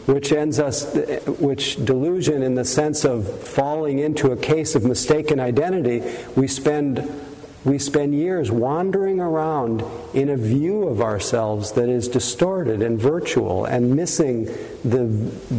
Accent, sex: American, male